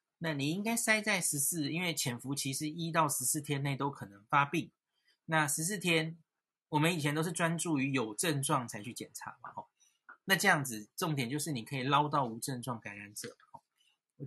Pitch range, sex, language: 135-165 Hz, male, Chinese